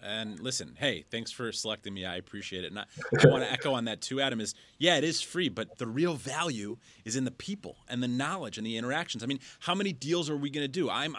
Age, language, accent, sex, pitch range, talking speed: 30-49, English, American, male, 110-150 Hz, 270 wpm